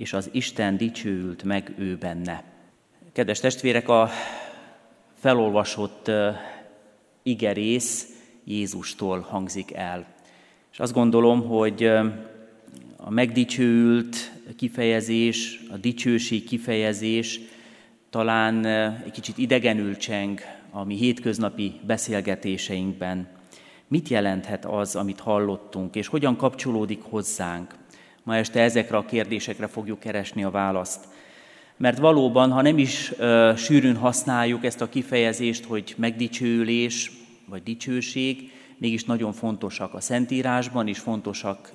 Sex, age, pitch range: male, 30-49, 105-125 Hz